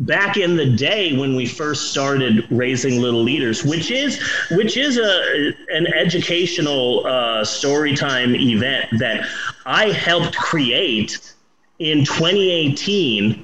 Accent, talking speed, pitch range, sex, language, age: American, 120 wpm, 120-155 Hz, male, English, 30-49